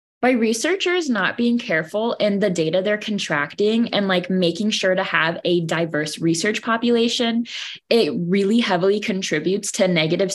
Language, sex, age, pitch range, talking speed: English, female, 20-39, 175-235 Hz, 150 wpm